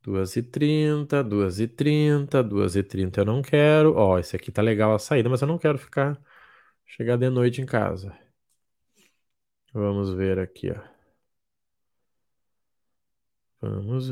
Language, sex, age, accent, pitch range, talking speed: Portuguese, male, 20-39, Brazilian, 110-135 Hz, 145 wpm